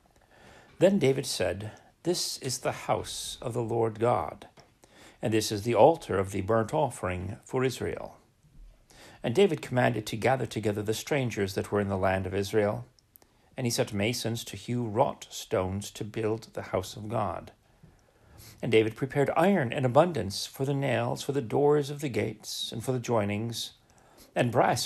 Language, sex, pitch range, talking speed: English, male, 105-135 Hz, 175 wpm